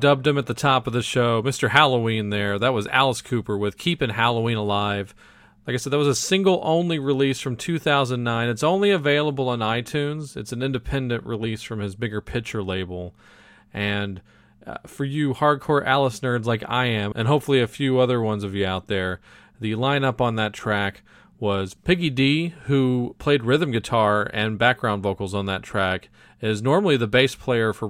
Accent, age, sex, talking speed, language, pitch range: American, 40-59, male, 190 wpm, English, 105-130 Hz